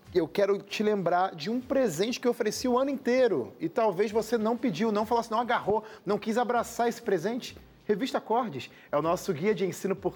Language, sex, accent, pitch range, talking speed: Portuguese, male, Brazilian, 145-205 Hz, 215 wpm